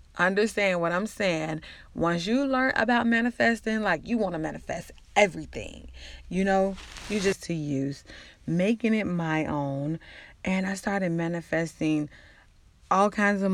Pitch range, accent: 160-205 Hz, American